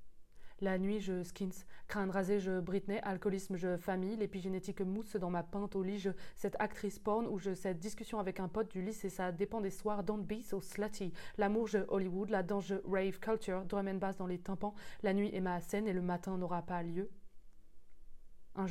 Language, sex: French, female